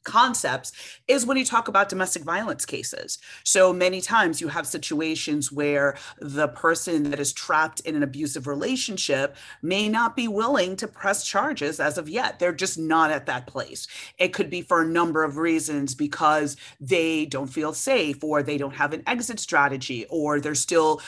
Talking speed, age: 180 wpm, 30-49